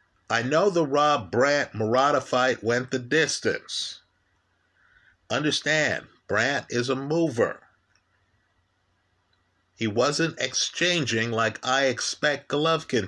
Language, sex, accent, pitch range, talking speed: English, male, American, 95-150 Hz, 90 wpm